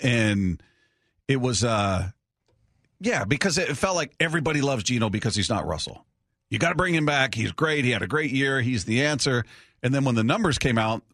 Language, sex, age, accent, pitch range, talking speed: English, male, 40-59, American, 100-130 Hz, 205 wpm